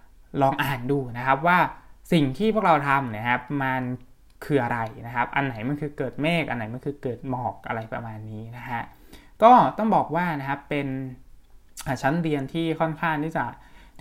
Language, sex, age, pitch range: Thai, male, 20-39, 125-150 Hz